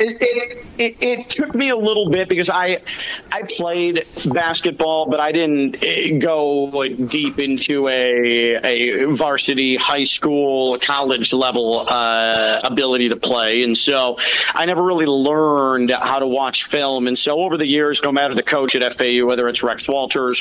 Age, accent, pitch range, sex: 40-59, American, 125-145 Hz, male